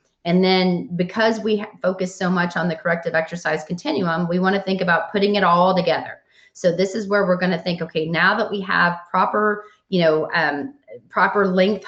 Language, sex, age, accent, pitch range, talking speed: English, female, 30-49, American, 170-205 Hz, 200 wpm